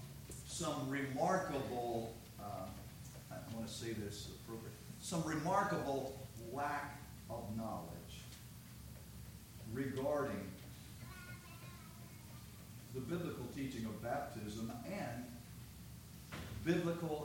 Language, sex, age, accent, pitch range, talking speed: English, male, 50-69, American, 115-175 Hz, 75 wpm